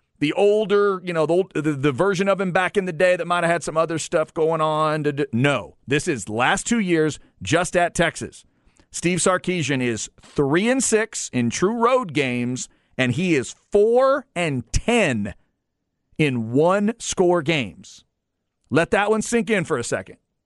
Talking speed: 180 wpm